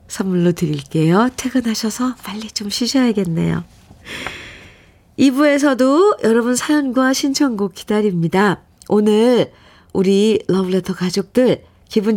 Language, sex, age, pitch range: Korean, female, 40-59, 180-255 Hz